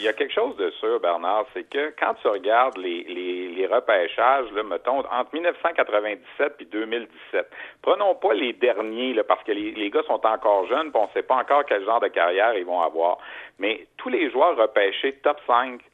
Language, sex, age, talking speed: French, male, 60-79, 205 wpm